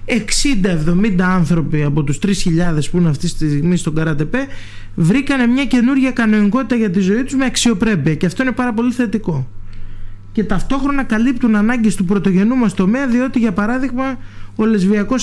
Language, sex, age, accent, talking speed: Greek, male, 20-39, native, 160 wpm